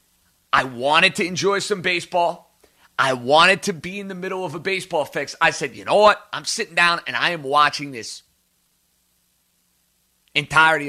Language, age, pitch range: English, 30-49, 140-190 Hz